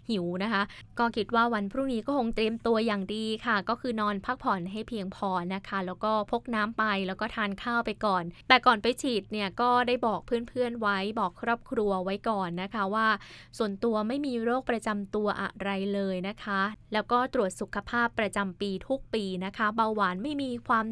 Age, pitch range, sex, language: 20-39, 195-235 Hz, female, Thai